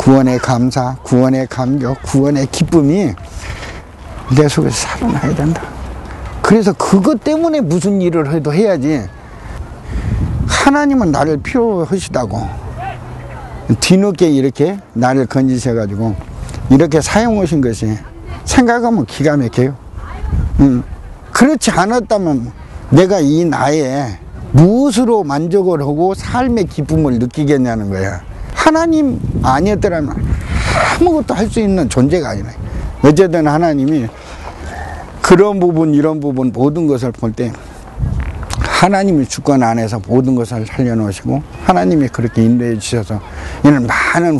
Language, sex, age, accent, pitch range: Korean, male, 50-69, native, 115-165 Hz